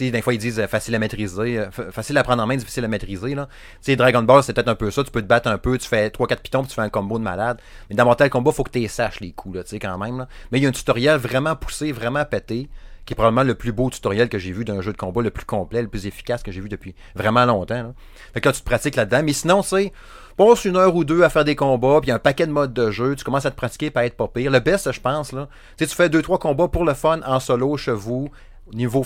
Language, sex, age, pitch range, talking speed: French, male, 30-49, 110-140 Hz, 310 wpm